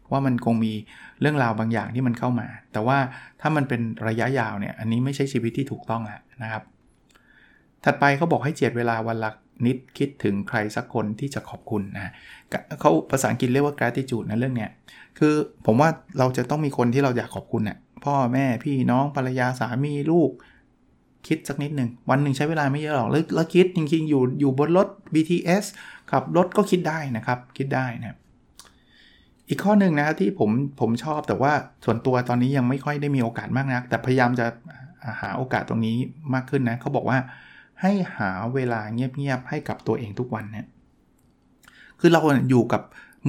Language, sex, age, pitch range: Thai, male, 20-39, 115-145 Hz